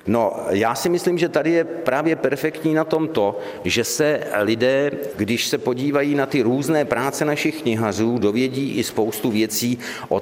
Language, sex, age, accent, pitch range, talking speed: Czech, male, 50-69, native, 100-130 Hz, 165 wpm